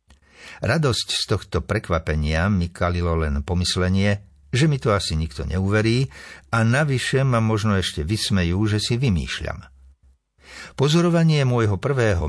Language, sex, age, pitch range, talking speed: Slovak, male, 60-79, 85-115 Hz, 125 wpm